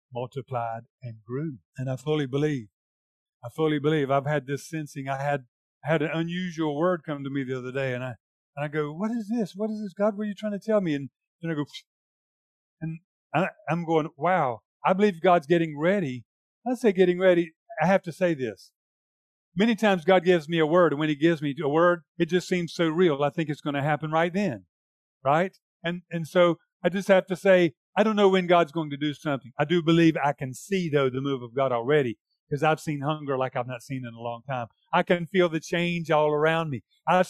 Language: English